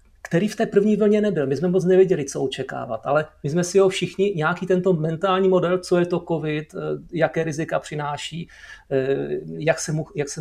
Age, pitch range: 40-59, 140-170 Hz